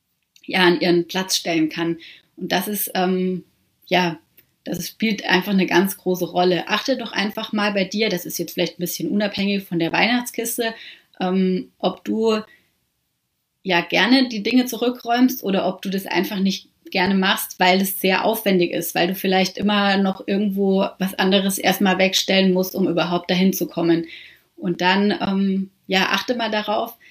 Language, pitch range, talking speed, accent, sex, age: German, 180-215 Hz, 175 wpm, German, female, 30-49